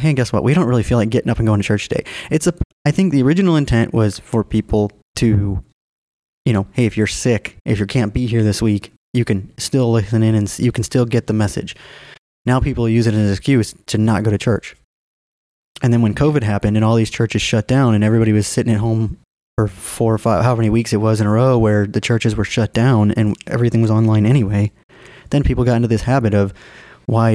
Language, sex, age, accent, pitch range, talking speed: English, male, 20-39, American, 105-125 Hz, 245 wpm